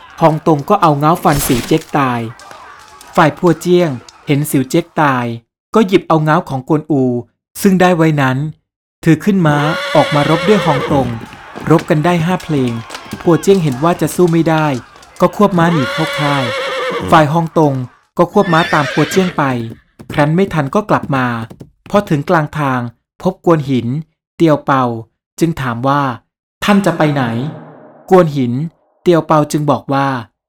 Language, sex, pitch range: Thai, male, 135-170 Hz